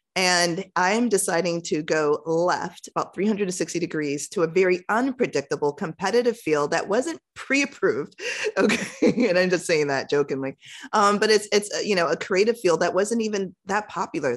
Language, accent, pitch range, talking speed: English, American, 145-185 Hz, 165 wpm